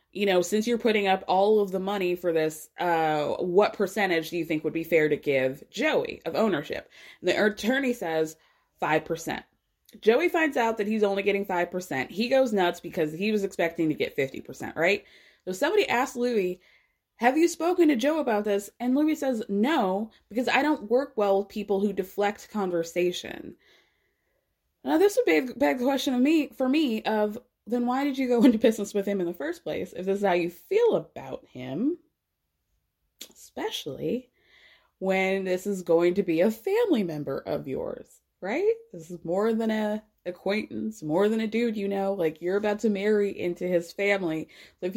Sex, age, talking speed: female, 20-39, 190 wpm